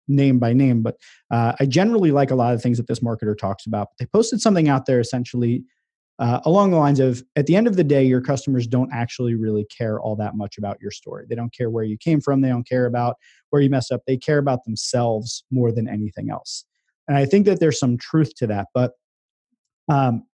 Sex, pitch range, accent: male, 120-145 Hz, American